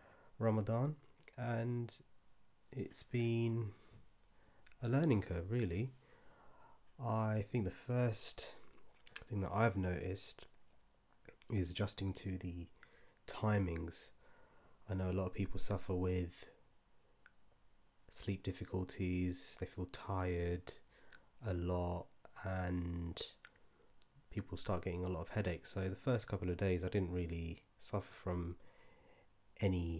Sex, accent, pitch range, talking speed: male, British, 90-105 Hz, 110 wpm